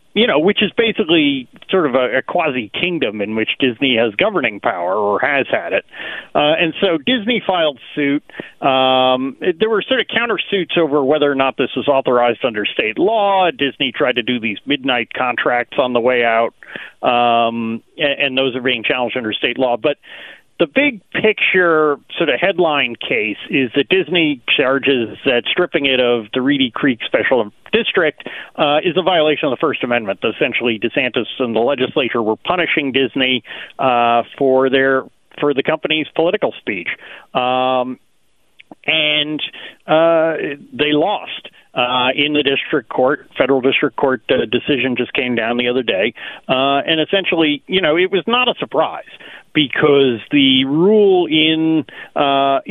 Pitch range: 125-165 Hz